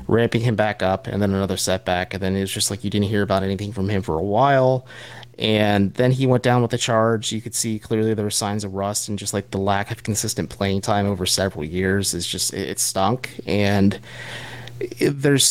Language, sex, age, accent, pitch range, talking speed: English, male, 30-49, American, 95-120 Hz, 230 wpm